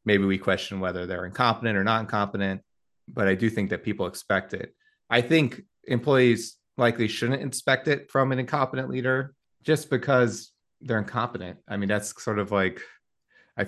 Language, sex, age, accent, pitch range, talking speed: English, male, 30-49, American, 95-110 Hz, 170 wpm